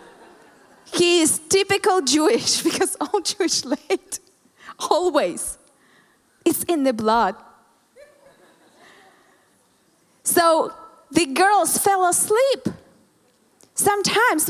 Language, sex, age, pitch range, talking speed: English, female, 20-39, 265-375 Hz, 80 wpm